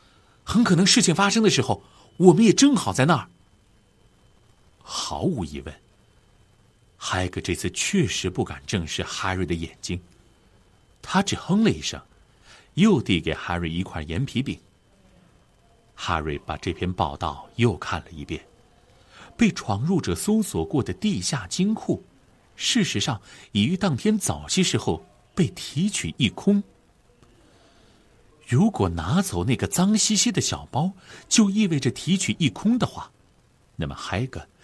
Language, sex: Chinese, male